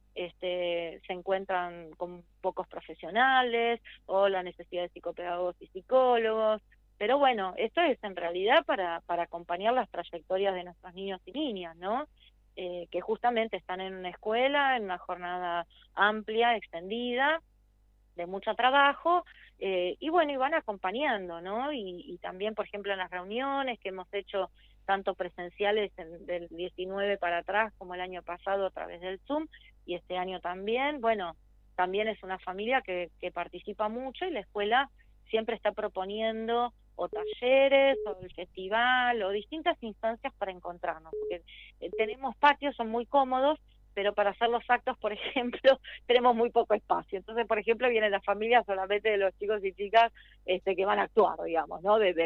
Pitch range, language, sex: 180-240 Hz, Spanish, female